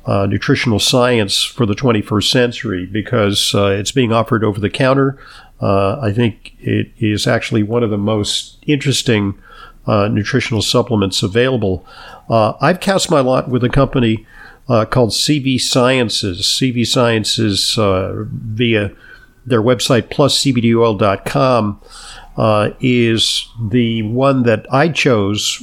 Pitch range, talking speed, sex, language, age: 105-130 Hz, 135 wpm, male, English, 50-69